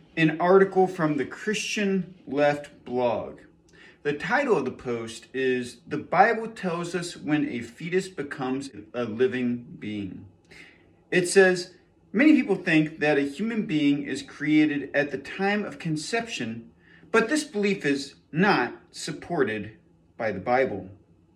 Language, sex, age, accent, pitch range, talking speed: English, male, 40-59, American, 135-180 Hz, 140 wpm